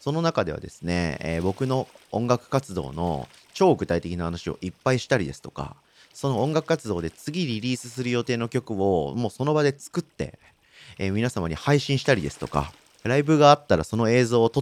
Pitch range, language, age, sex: 85-140 Hz, Japanese, 40-59, male